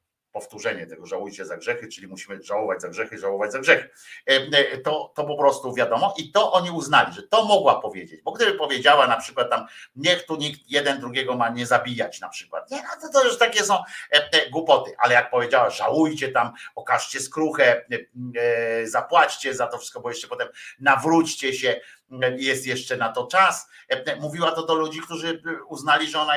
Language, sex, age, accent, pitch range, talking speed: Polish, male, 50-69, native, 125-195 Hz, 180 wpm